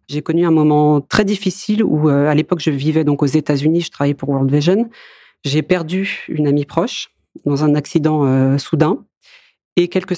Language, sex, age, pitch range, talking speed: French, female, 40-59, 150-180 Hz, 190 wpm